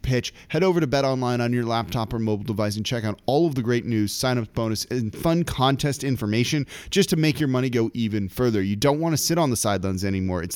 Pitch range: 115-150 Hz